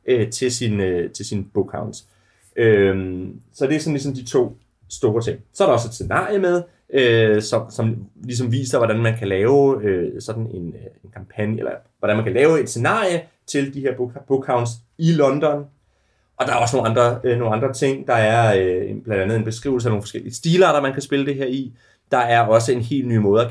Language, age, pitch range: Danish, 30-49, 110-140 Hz